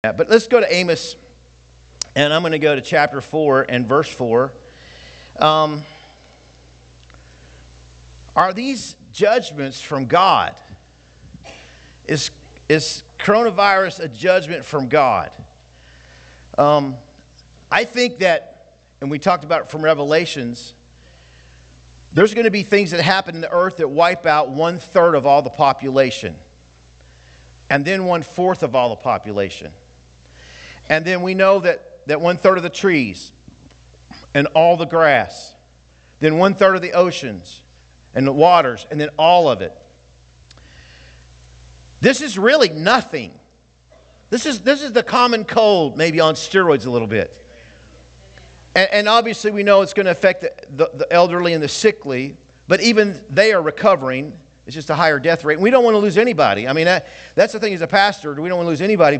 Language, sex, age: English, male, 50-69